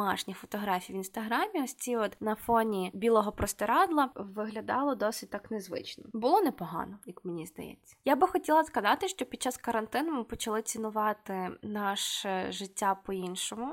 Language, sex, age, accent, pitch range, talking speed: Ukrainian, female, 20-39, native, 195-250 Hz, 150 wpm